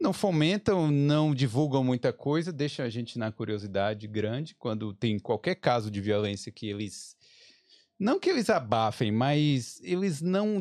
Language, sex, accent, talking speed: Portuguese, male, Brazilian, 155 wpm